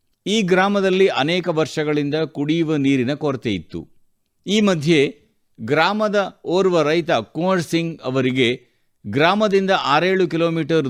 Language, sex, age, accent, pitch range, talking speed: Kannada, male, 50-69, native, 130-170 Hz, 105 wpm